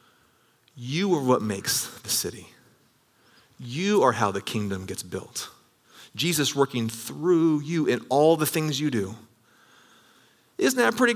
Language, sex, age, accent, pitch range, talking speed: English, male, 30-49, American, 125-170 Hz, 140 wpm